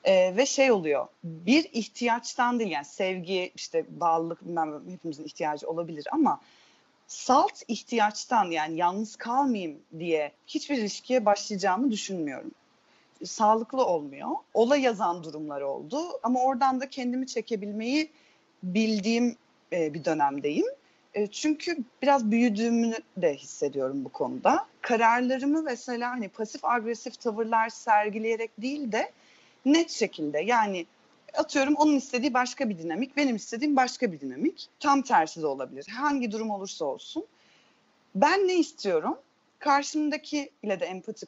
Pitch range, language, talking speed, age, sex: 200-280 Hz, Turkish, 125 wpm, 40-59, female